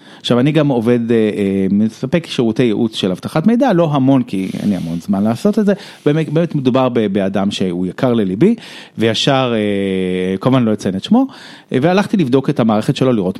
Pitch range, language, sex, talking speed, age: 105-165 Hz, Hebrew, male, 170 wpm, 30-49